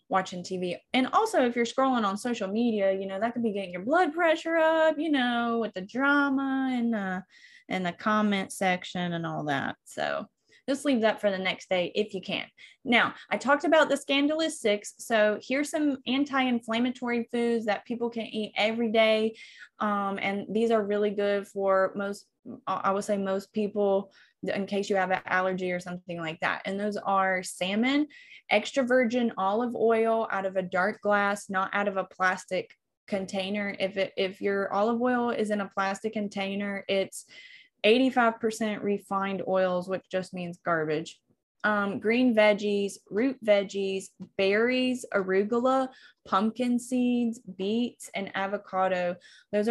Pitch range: 195-240 Hz